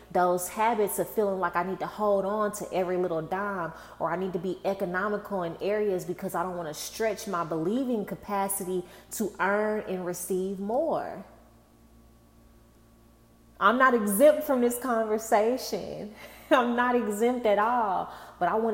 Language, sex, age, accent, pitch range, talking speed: English, female, 20-39, American, 180-215 Hz, 160 wpm